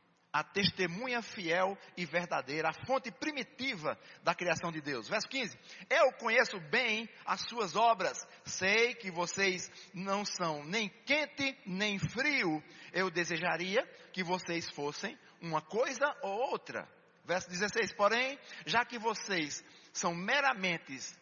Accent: Brazilian